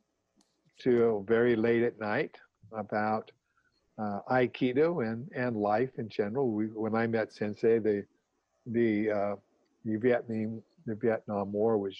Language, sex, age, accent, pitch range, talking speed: English, male, 50-69, American, 105-120 Hz, 135 wpm